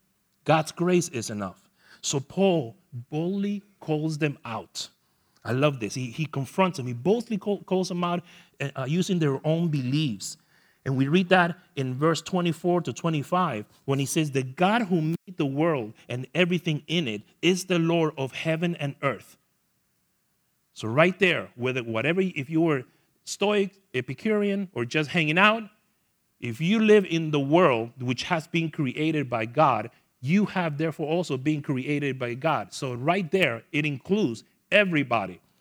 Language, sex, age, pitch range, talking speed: English, male, 40-59, 140-180 Hz, 160 wpm